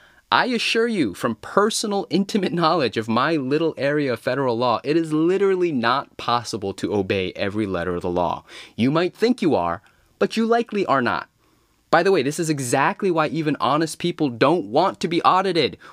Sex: male